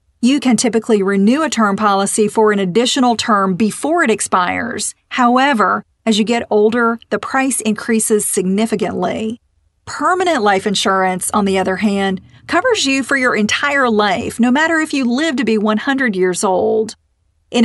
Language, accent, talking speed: English, American, 160 wpm